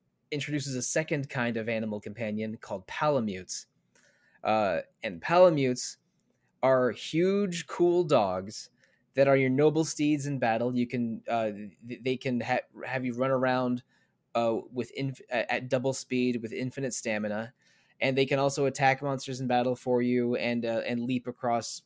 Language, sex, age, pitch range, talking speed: English, male, 20-39, 120-140 Hz, 155 wpm